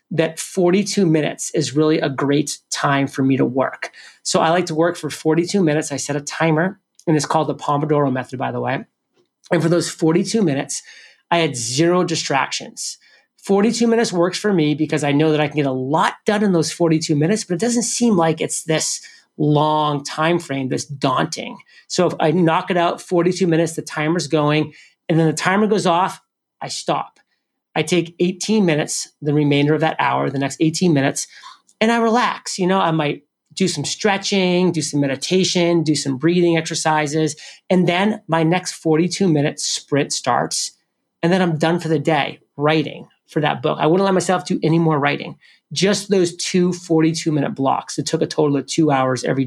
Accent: American